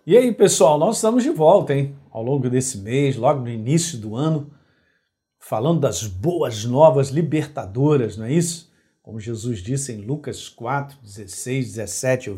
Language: Portuguese